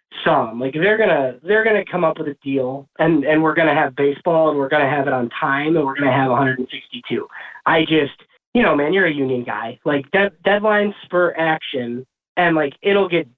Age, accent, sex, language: 20-39, American, male, English